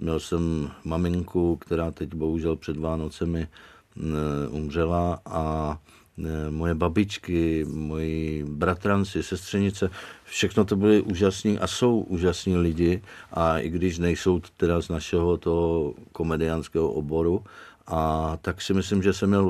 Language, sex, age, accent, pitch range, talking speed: Czech, male, 50-69, native, 80-95 Hz, 125 wpm